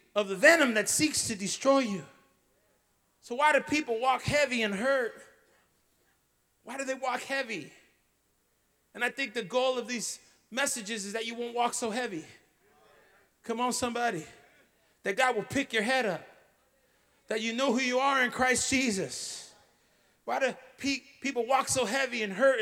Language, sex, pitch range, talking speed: English, male, 235-280 Hz, 170 wpm